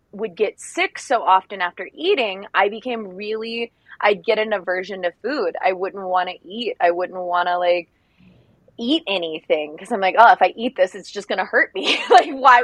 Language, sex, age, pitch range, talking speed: English, female, 20-39, 175-230 Hz, 210 wpm